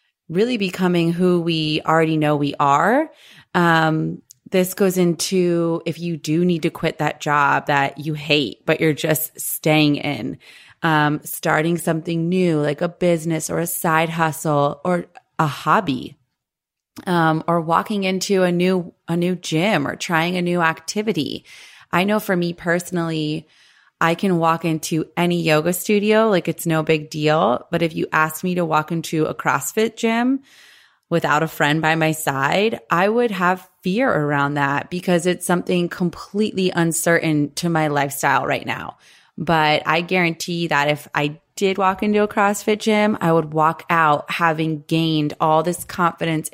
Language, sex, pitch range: English, female, 155-180 Hz